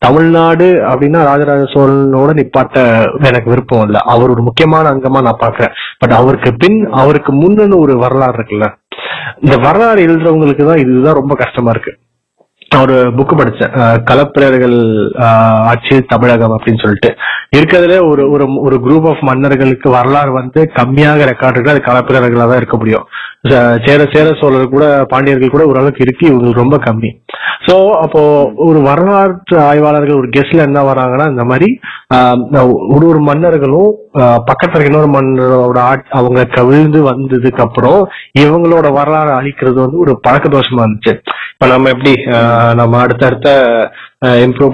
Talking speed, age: 135 wpm, 30-49